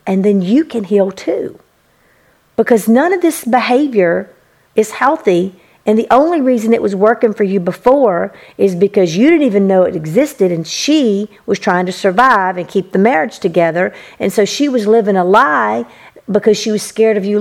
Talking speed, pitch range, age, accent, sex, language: 190 wpm, 190-235 Hz, 50-69, American, female, English